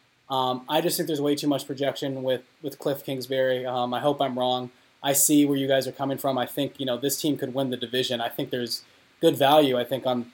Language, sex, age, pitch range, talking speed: English, male, 20-39, 125-140 Hz, 255 wpm